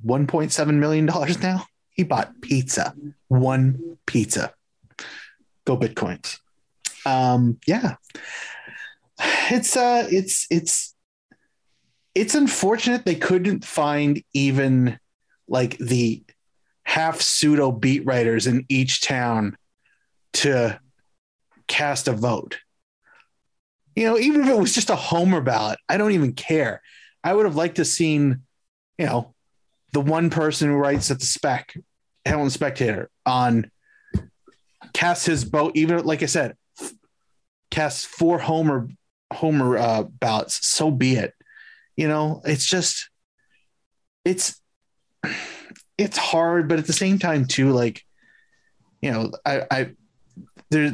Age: 30-49